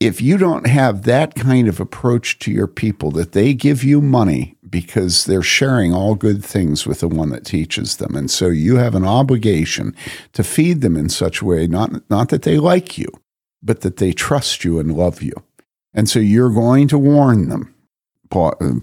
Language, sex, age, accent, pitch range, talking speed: English, male, 50-69, American, 95-140 Hz, 200 wpm